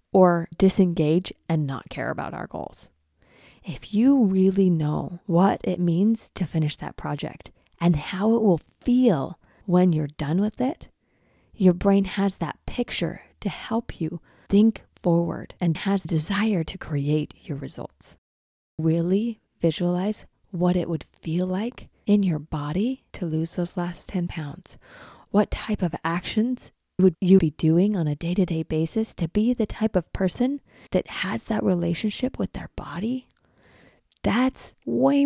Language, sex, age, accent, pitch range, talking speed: English, female, 20-39, American, 160-200 Hz, 150 wpm